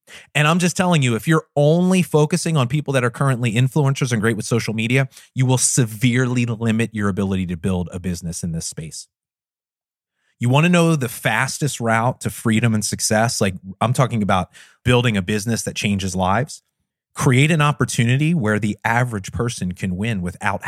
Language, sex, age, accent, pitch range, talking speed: English, male, 30-49, American, 110-155 Hz, 185 wpm